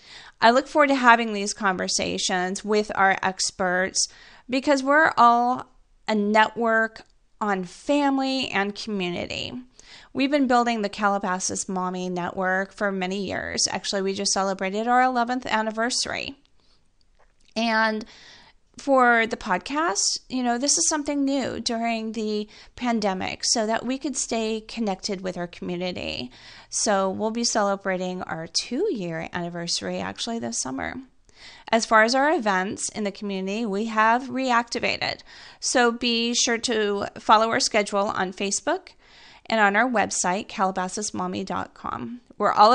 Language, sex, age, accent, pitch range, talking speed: English, female, 30-49, American, 190-240 Hz, 135 wpm